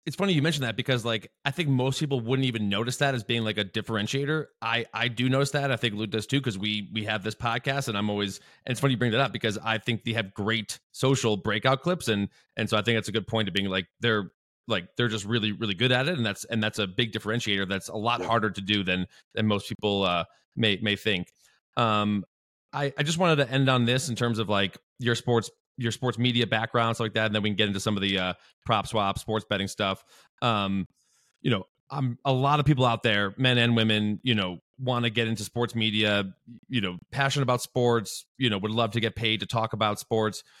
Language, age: English, 20-39